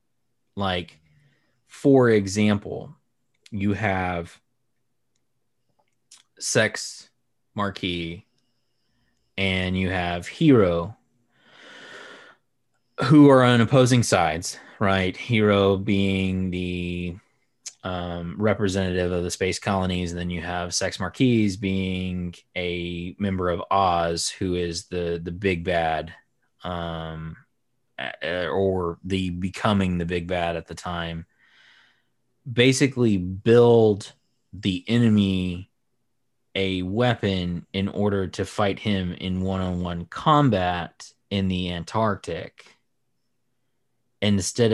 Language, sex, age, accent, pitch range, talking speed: English, male, 20-39, American, 90-115 Hz, 95 wpm